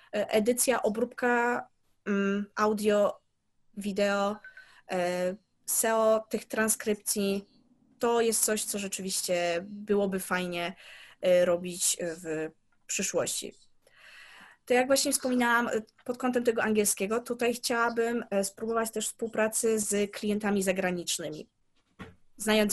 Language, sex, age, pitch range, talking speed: Polish, female, 20-39, 190-230 Hz, 90 wpm